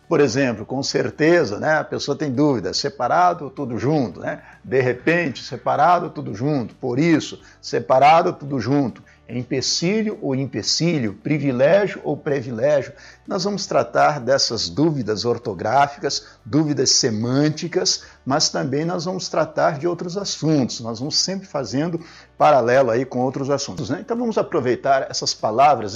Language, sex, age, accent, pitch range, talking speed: Portuguese, male, 60-79, Brazilian, 135-170 Hz, 140 wpm